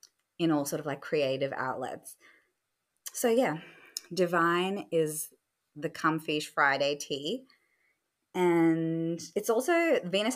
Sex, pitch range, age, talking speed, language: female, 145-185 Hz, 20-39, 110 wpm, English